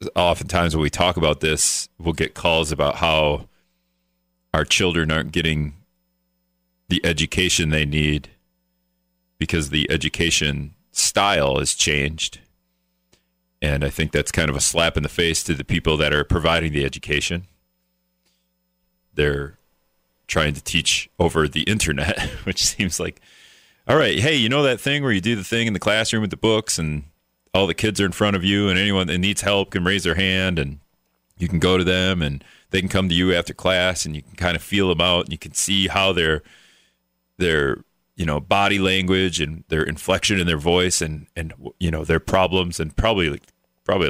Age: 40-59